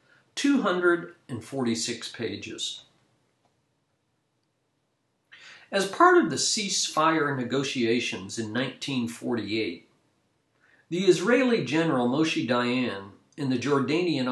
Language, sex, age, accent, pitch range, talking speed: English, male, 50-69, American, 120-175 Hz, 75 wpm